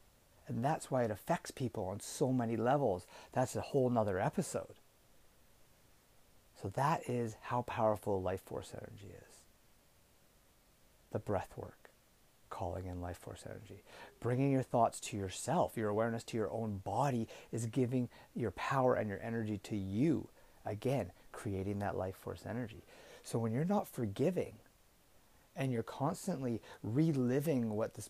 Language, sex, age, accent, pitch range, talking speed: English, male, 30-49, American, 100-125 Hz, 145 wpm